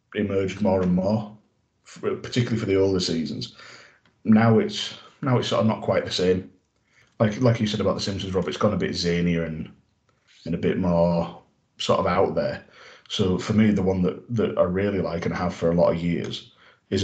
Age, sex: 30-49, male